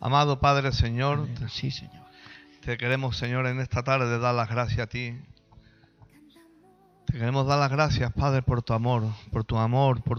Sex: male